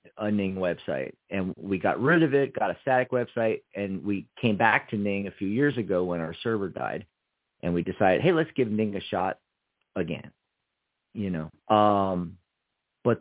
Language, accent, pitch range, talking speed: English, American, 95-120 Hz, 185 wpm